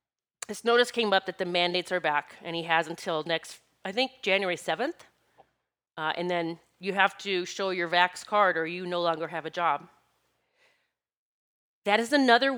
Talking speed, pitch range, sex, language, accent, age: 180 wpm, 180-235 Hz, female, English, American, 30-49